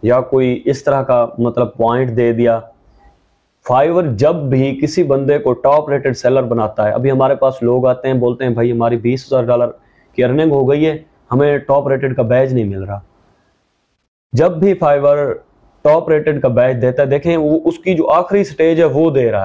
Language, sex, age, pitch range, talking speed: Urdu, male, 30-49, 120-155 Hz, 200 wpm